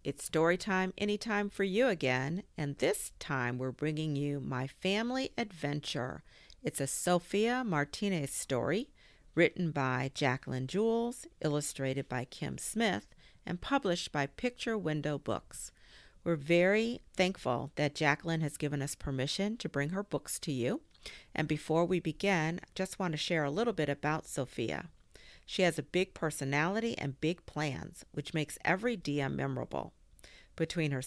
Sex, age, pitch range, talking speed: female, 50-69, 135-190 Hz, 155 wpm